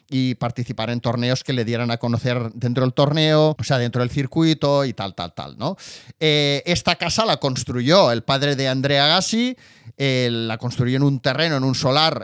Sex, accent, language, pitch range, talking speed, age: male, Spanish, Spanish, 125-160 Hz, 200 wpm, 30-49